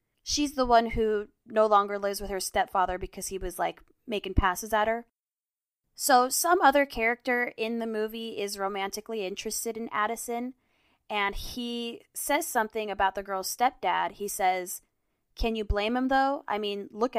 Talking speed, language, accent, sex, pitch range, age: 170 wpm, English, American, female, 205-270 Hz, 20-39